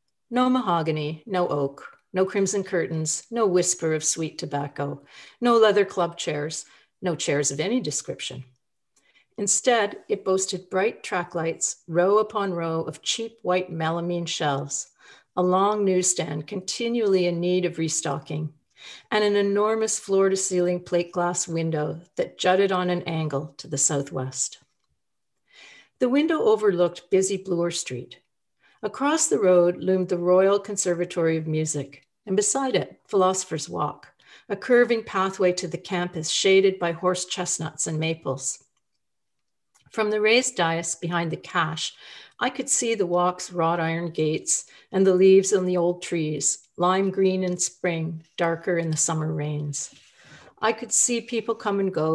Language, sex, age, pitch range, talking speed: English, female, 50-69, 160-195 Hz, 150 wpm